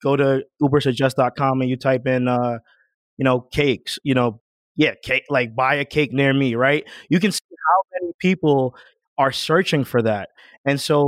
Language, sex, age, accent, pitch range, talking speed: English, male, 20-39, American, 140-180 Hz, 185 wpm